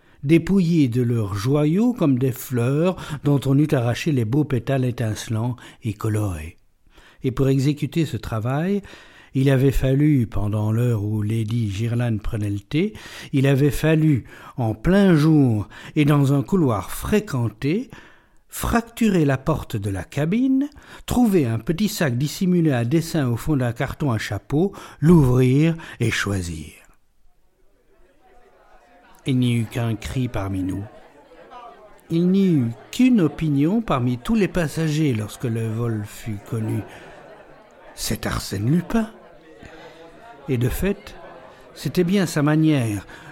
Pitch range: 115-165 Hz